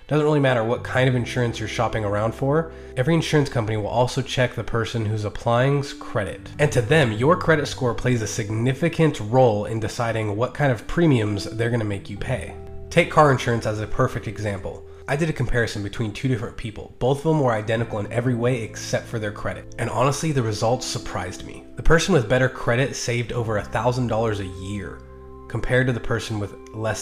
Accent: American